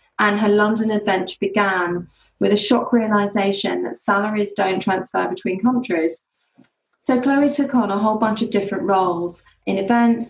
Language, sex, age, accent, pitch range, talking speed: English, female, 20-39, British, 185-225 Hz, 155 wpm